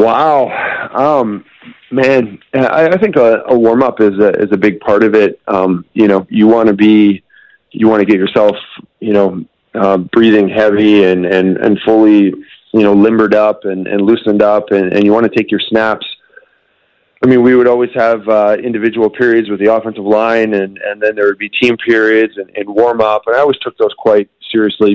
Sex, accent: male, American